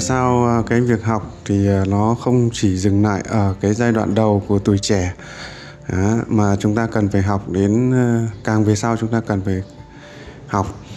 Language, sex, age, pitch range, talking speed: Vietnamese, male, 20-39, 100-120 Hz, 180 wpm